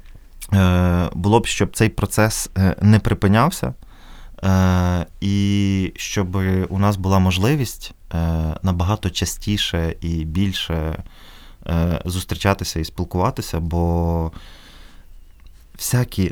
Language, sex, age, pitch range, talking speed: Ukrainian, male, 20-39, 85-105 Hz, 80 wpm